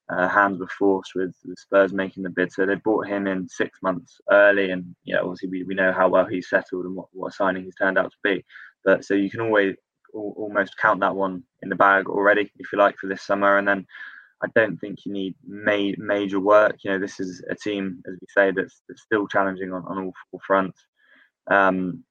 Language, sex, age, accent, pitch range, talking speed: English, male, 20-39, British, 95-100 Hz, 240 wpm